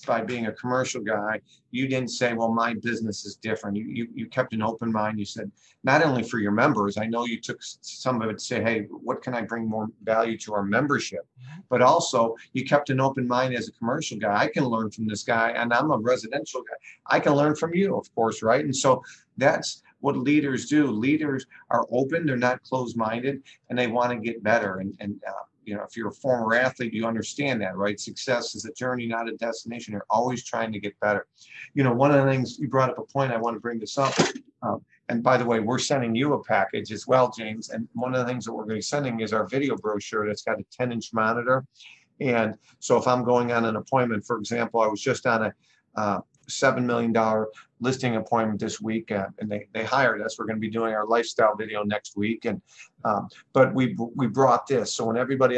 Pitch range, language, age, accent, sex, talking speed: 110-130 Hz, English, 50-69, American, male, 235 wpm